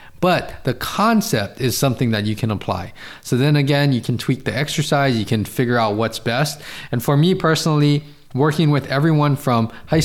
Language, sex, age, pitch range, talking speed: English, male, 20-39, 120-155 Hz, 190 wpm